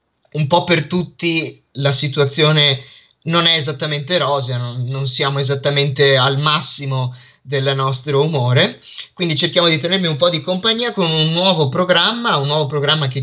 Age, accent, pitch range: 20-39, native, 130-155 Hz